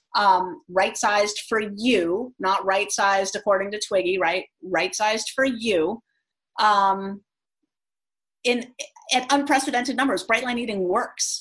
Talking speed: 115 wpm